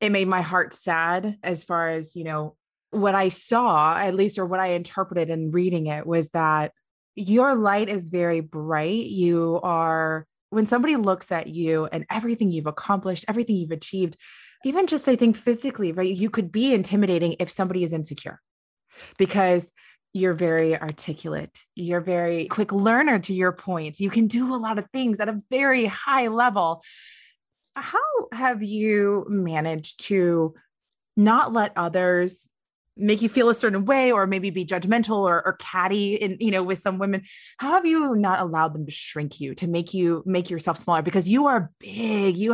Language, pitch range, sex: English, 170-225 Hz, female